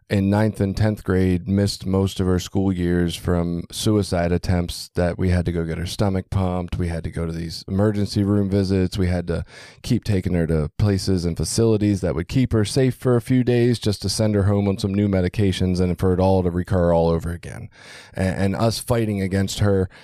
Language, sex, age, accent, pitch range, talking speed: English, male, 20-39, American, 90-110 Hz, 225 wpm